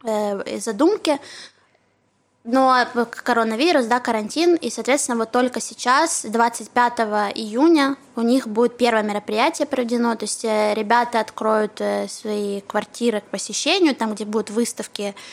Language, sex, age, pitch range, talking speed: Russian, female, 20-39, 220-265 Hz, 115 wpm